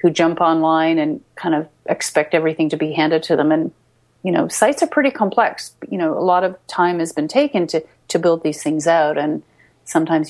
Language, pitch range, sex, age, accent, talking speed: English, 160-195 Hz, female, 30-49, American, 220 wpm